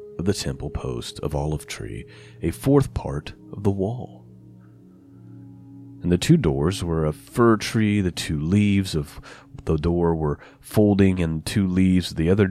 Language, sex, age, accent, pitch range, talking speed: English, male, 30-49, American, 80-105 Hz, 170 wpm